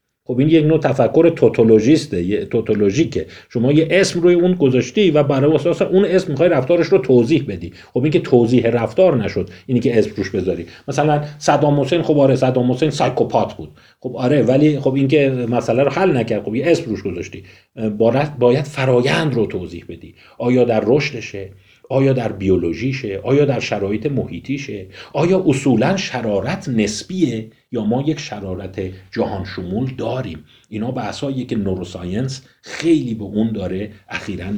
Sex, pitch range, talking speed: male, 105-145 Hz, 160 wpm